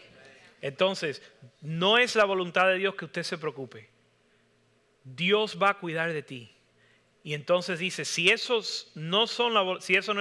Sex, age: male, 30-49